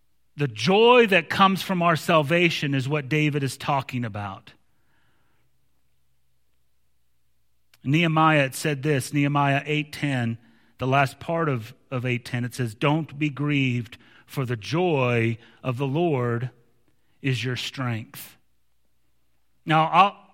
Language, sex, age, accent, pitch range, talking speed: English, male, 40-59, American, 140-195 Hz, 120 wpm